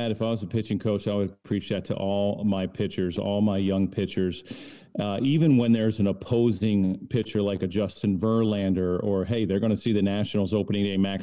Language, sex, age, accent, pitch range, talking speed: English, male, 40-59, American, 100-115 Hz, 215 wpm